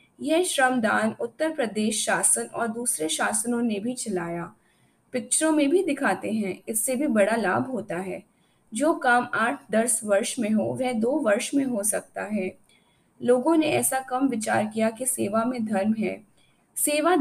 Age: 20-39